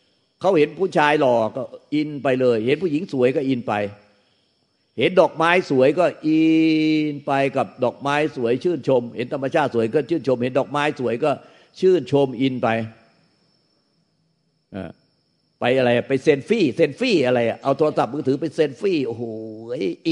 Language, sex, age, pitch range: Thai, male, 60-79, 115-150 Hz